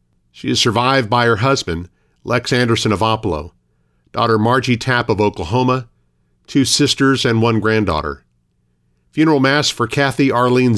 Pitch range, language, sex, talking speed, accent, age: 90-130 Hz, English, male, 140 wpm, American, 50-69